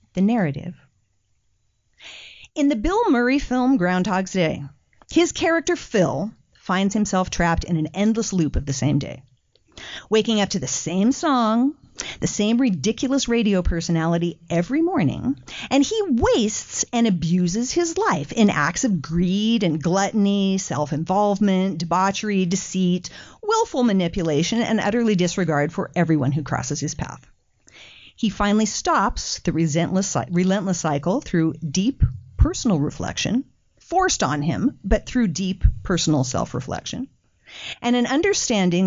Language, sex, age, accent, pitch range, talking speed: English, female, 40-59, American, 165-240 Hz, 130 wpm